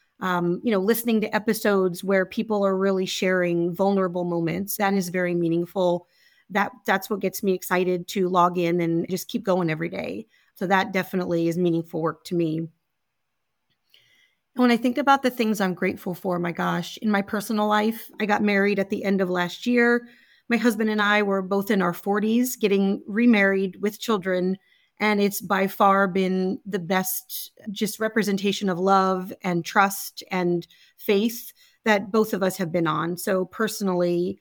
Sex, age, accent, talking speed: female, 30-49, American, 170 wpm